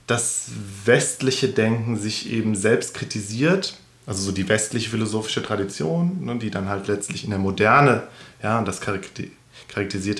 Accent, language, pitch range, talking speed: German, German, 100-120 Hz, 140 wpm